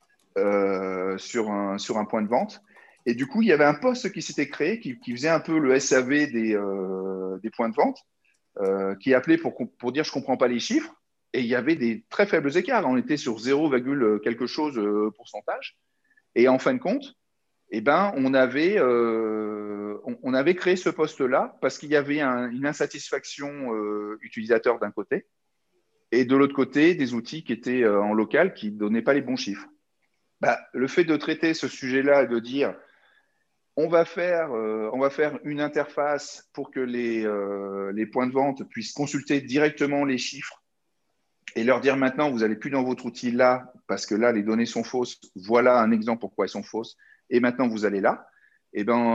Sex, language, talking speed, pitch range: male, French, 200 wpm, 110-150 Hz